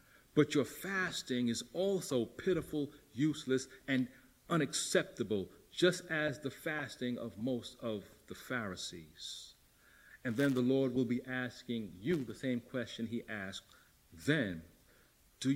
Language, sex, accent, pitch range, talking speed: English, male, American, 120-160 Hz, 125 wpm